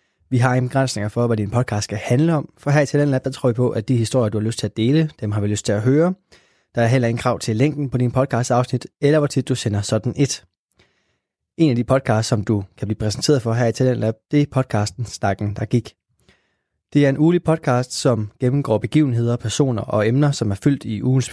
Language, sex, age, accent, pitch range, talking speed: Danish, male, 20-39, native, 115-140 Hz, 250 wpm